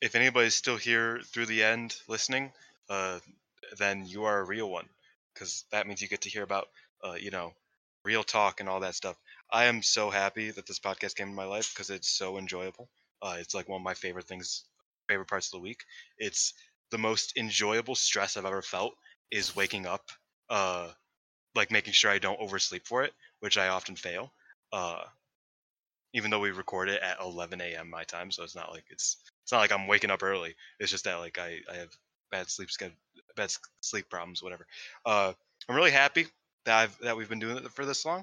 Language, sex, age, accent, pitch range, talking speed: English, male, 20-39, American, 90-115 Hz, 210 wpm